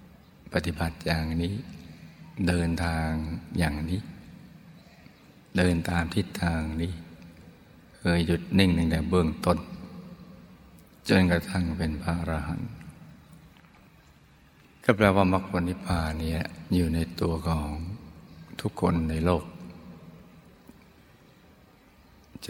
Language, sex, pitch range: Thai, male, 80-90 Hz